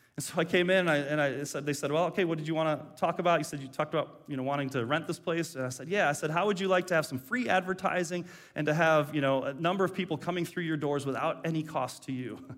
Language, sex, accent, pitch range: English, male, American, 145-190 Hz